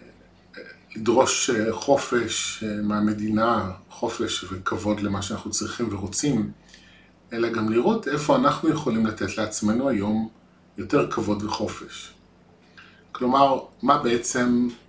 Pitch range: 105-120 Hz